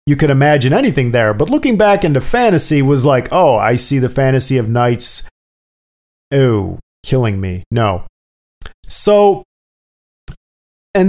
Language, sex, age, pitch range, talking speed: English, male, 40-59, 115-160 Hz, 135 wpm